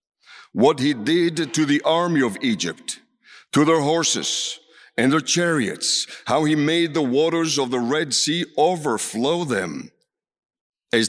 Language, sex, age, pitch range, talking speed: English, male, 60-79, 135-170 Hz, 140 wpm